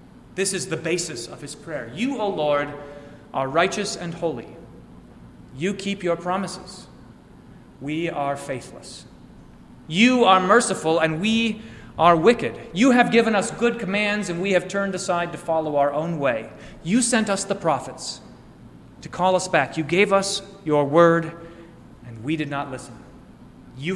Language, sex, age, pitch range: English, male, 30-49, 140-185 Hz